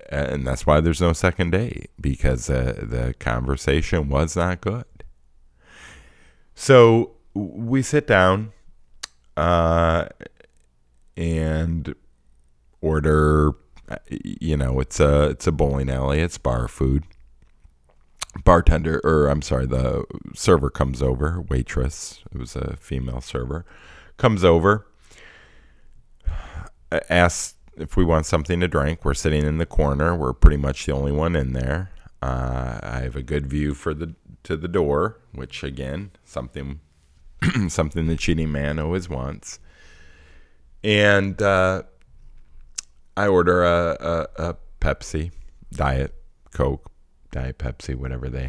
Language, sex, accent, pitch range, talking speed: English, male, American, 65-85 Hz, 125 wpm